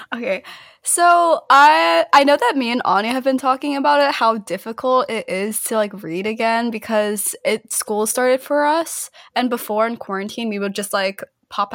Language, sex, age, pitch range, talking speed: English, female, 20-39, 190-250 Hz, 190 wpm